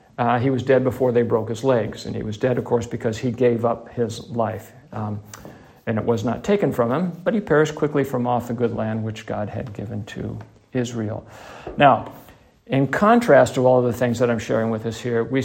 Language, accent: English, American